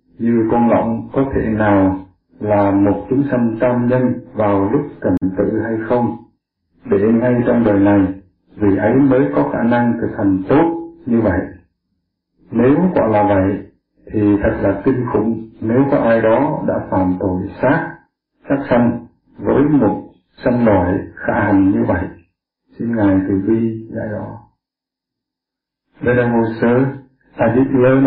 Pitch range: 105-125 Hz